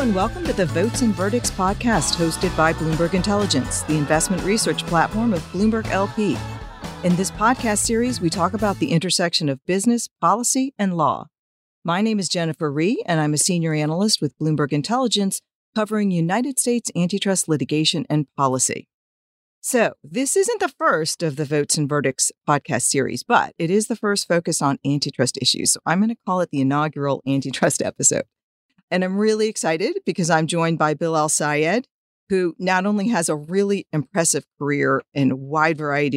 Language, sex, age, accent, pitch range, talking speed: English, female, 40-59, American, 150-200 Hz, 180 wpm